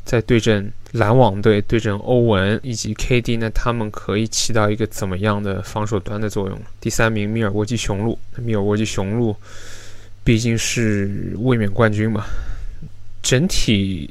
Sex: male